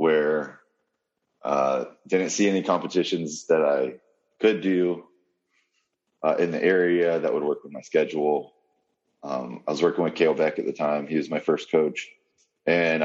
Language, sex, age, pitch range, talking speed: English, male, 20-39, 75-100 Hz, 165 wpm